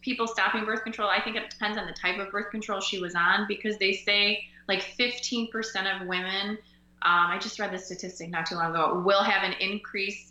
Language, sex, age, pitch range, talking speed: English, female, 20-39, 175-210 Hz, 220 wpm